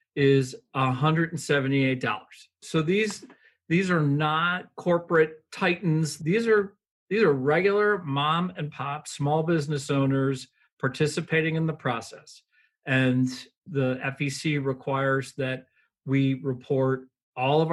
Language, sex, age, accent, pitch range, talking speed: English, male, 40-59, American, 130-155 Hz, 110 wpm